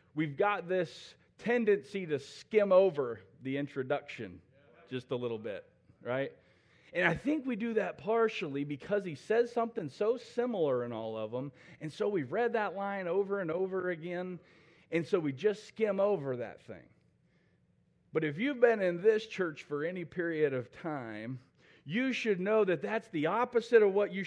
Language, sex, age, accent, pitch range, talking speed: English, male, 40-59, American, 155-215 Hz, 175 wpm